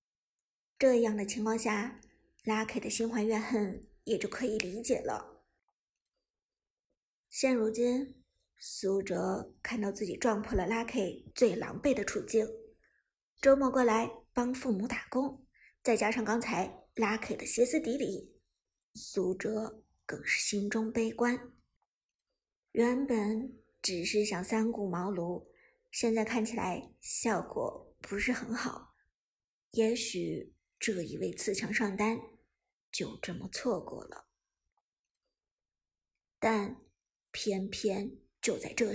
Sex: male